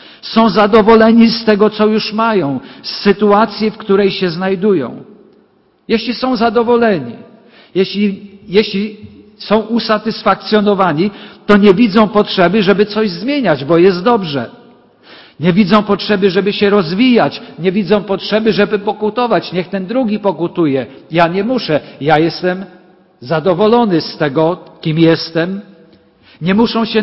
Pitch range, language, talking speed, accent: 180-220 Hz, Polish, 130 wpm, native